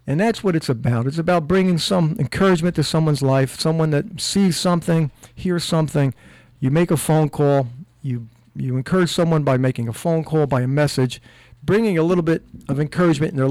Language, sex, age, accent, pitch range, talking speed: English, male, 50-69, American, 125-155 Hz, 195 wpm